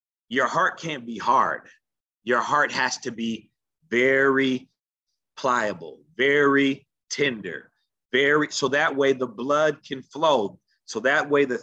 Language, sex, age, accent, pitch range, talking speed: English, male, 30-49, American, 120-155 Hz, 135 wpm